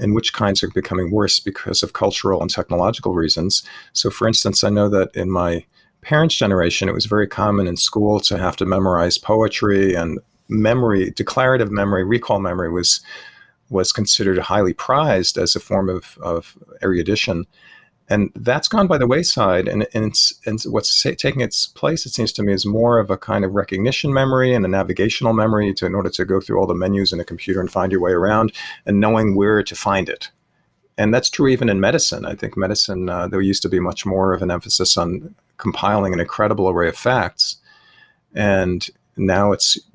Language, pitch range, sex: English, 95-110 Hz, male